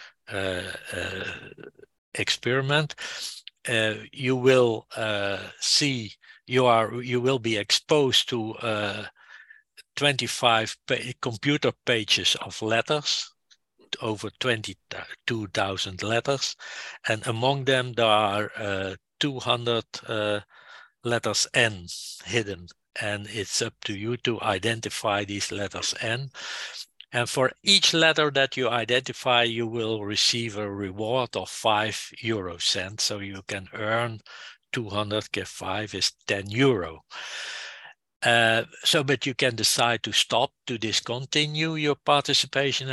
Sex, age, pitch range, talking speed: male, 60-79, 105-130 Hz, 115 wpm